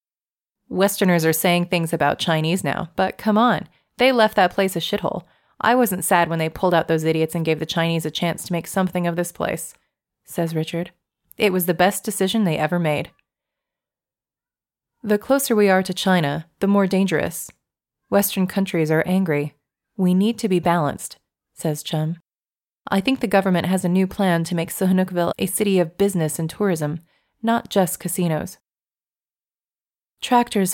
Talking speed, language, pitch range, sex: 170 wpm, English, 165-195 Hz, female